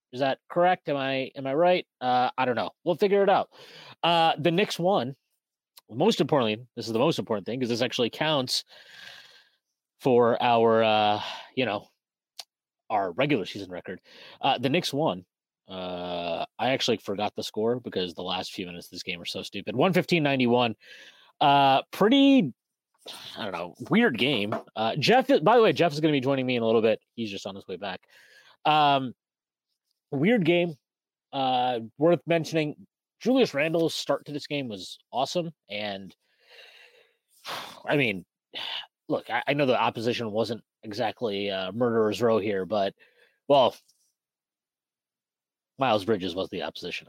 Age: 30-49